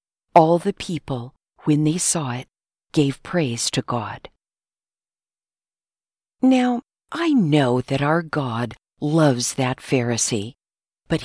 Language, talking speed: English, 110 wpm